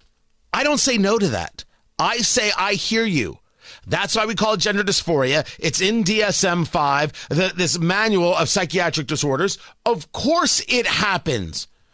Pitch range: 195-260 Hz